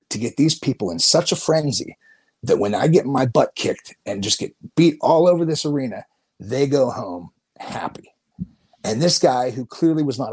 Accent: American